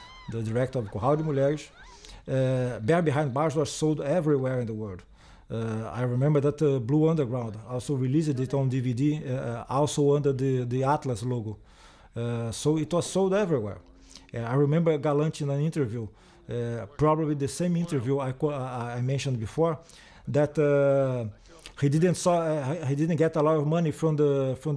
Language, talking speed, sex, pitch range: English, 175 wpm, male, 125-160 Hz